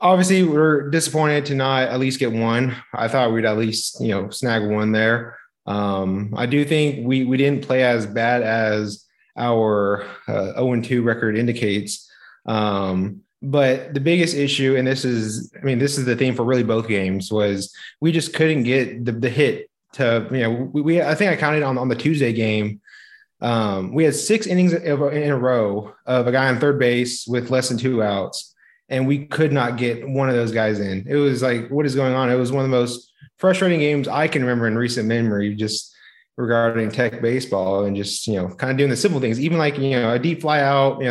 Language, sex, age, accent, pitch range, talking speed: English, male, 20-39, American, 110-140 Hz, 215 wpm